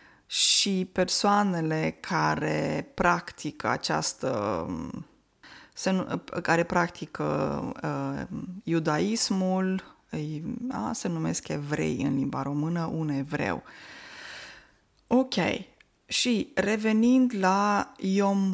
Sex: female